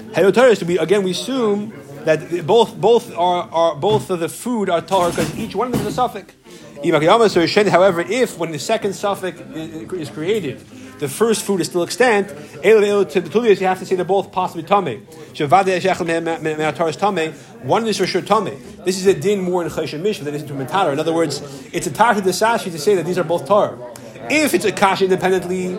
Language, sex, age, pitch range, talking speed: English, male, 30-49, 155-200 Hz, 190 wpm